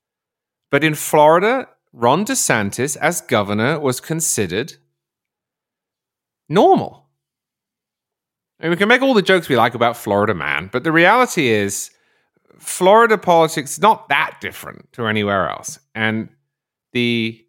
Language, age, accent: English, 30-49, British